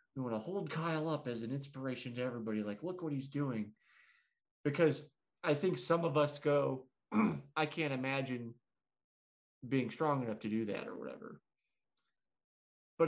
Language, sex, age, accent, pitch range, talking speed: English, male, 30-49, American, 120-150 Hz, 160 wpm